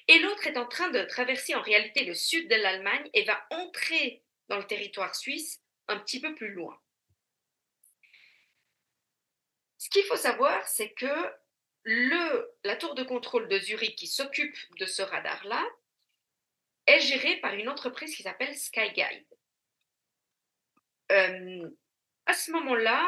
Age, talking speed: 40-59, 145 wpm